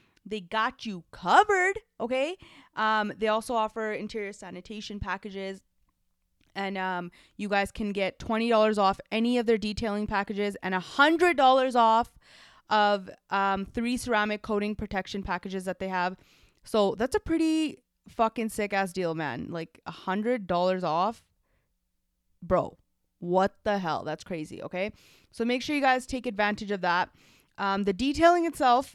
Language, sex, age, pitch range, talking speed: English, female, 20-39, 185-240 Hz, 155 wpm